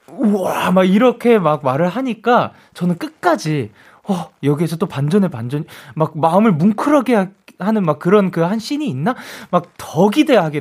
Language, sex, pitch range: Korean, male, 135-220 Hz